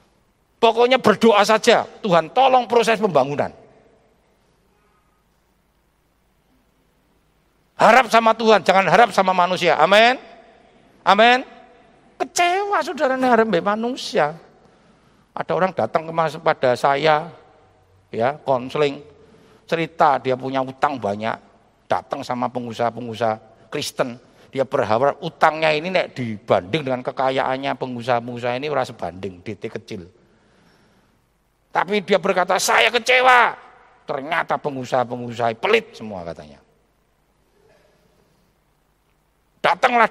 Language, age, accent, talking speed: Indonesian, 50-69, native, 90 wpm